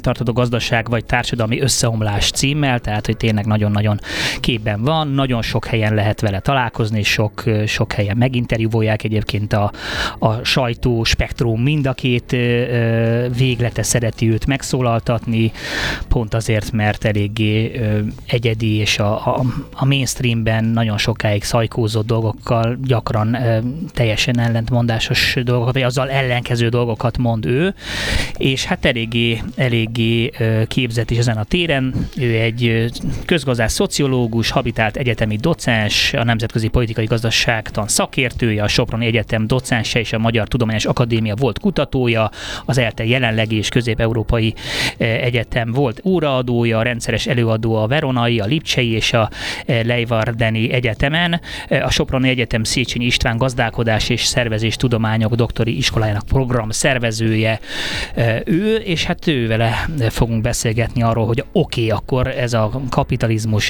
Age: 20-39